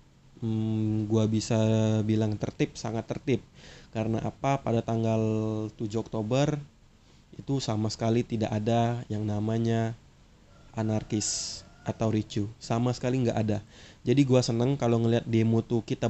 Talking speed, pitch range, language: 130 wpm, 110-120 Hz, Indonesian